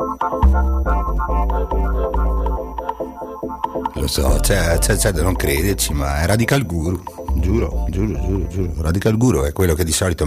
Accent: native